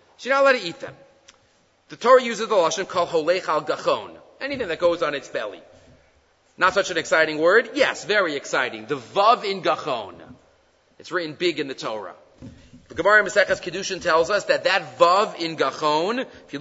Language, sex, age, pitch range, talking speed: English, male, 30-49, 165-255 Hz, 190 wpm